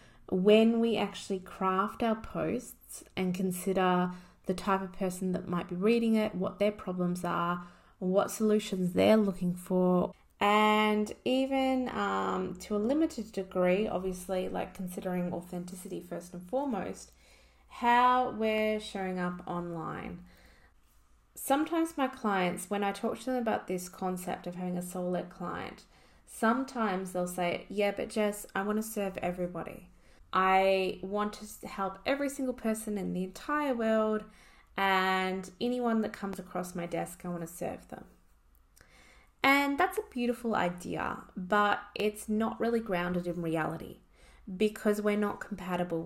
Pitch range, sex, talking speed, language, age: 180-215 Hz, female, 145 wpm, English, 20-39